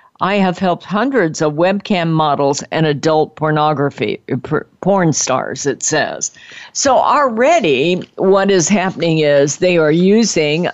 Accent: American